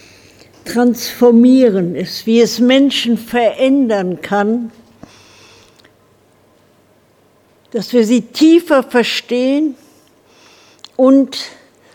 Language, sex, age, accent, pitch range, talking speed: German, female, 60-79, German, 225-270 Hz, 65 wpm